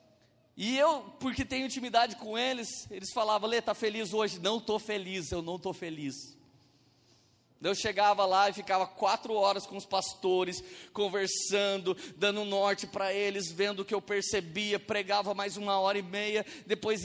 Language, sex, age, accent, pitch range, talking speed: Portuguese, male, 20-39, Brazilian, 145-205 Hz, 165 wpm